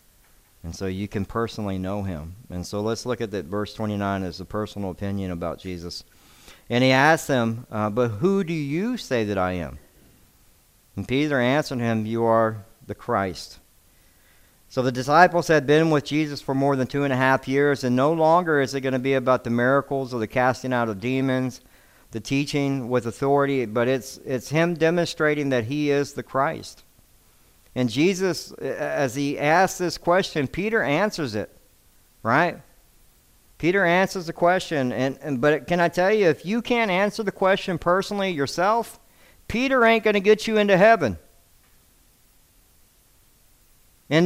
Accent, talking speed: American, 170 wpm